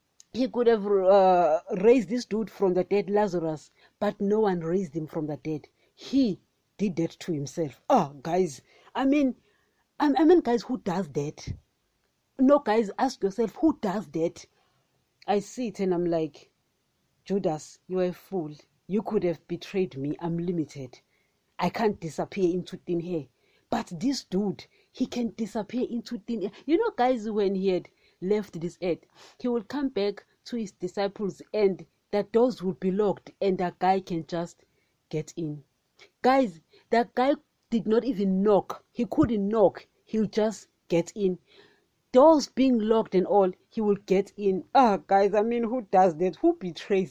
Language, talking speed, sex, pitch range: English, 170 wpm, female, 175-225 Hz